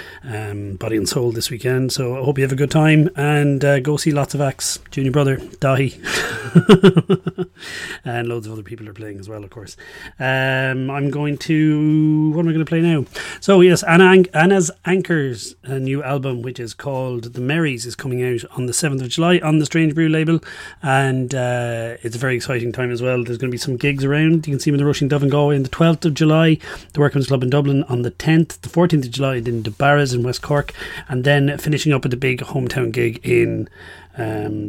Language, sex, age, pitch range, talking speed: English, male, 30-49, 120-155 Hz, 230 wpm